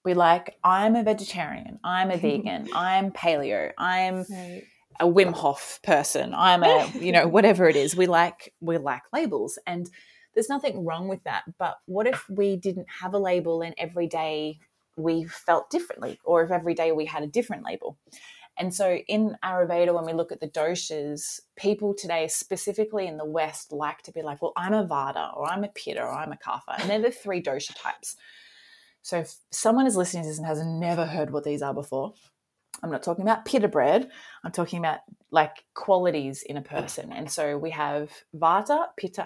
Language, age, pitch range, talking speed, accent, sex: English, 20-39, 160-190 Hz, 195 wpm, Australian, female